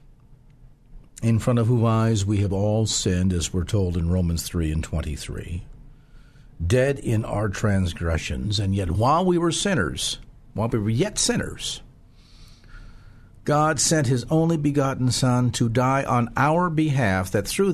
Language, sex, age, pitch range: English, male, 50-69, 105-140 Hz